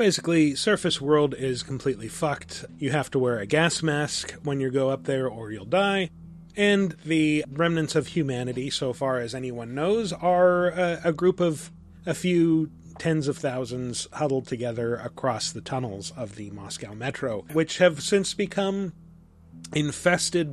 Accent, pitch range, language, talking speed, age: American, 135-180 Hz, English, 160 wpm, 30-49